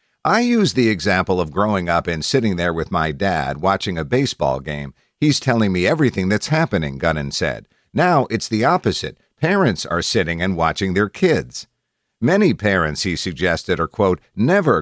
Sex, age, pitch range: male, 50-69, 85-110 Hz